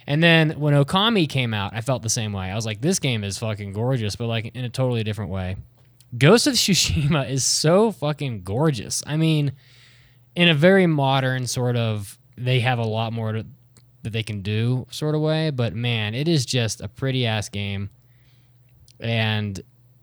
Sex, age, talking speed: male, 20-39, 160 wpm